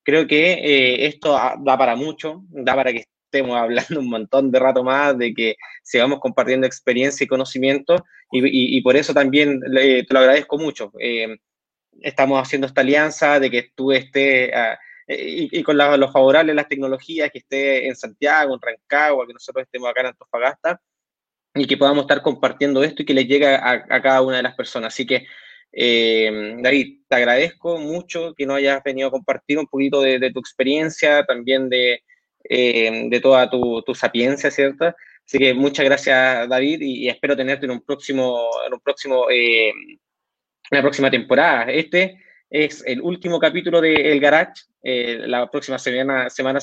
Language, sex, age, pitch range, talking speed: Spanish, male, 20-39, 130-145 Hz, 185 wpm